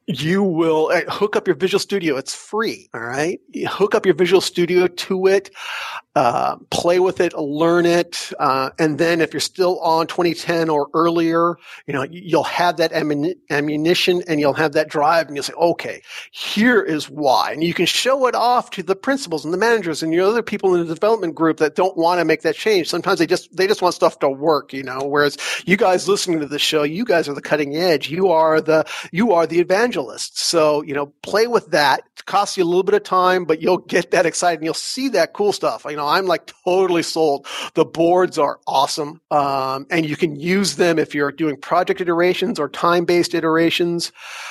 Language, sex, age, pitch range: English, male, 40-59, 155-185 Hz